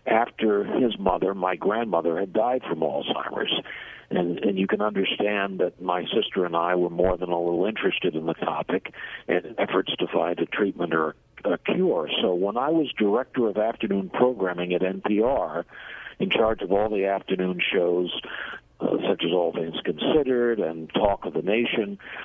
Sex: male